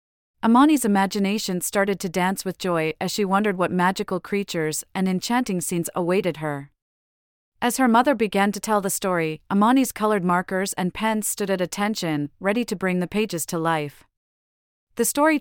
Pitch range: 160-215 Hz